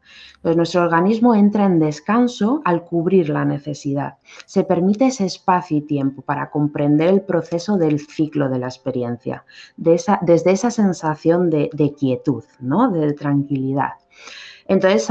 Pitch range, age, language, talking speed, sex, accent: 150-185 Hz, 30-49, Spanish, 130 wpm, female, Spanish